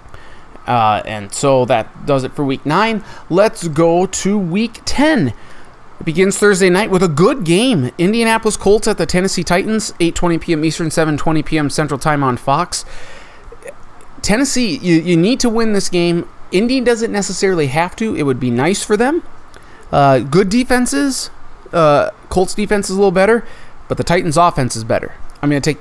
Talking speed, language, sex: 175 wpm, English, male